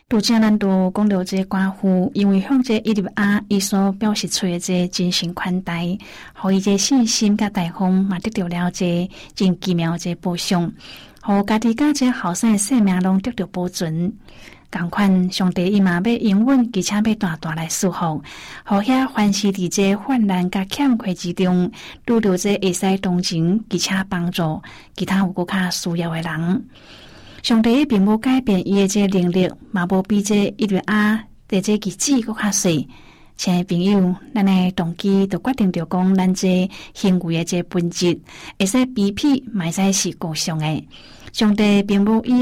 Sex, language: female, Chinese